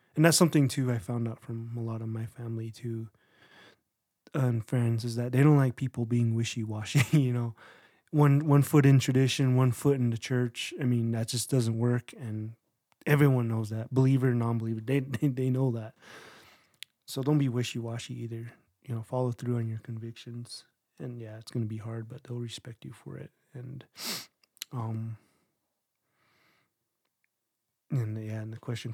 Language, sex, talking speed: English, male, 185 wpm